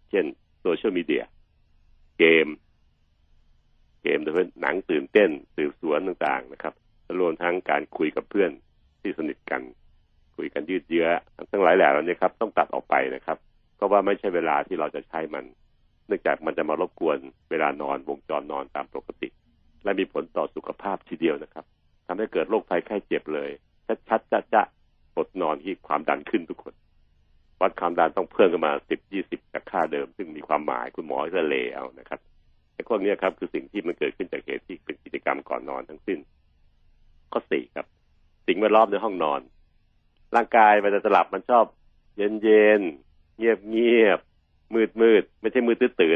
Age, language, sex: 60-79, Thai, male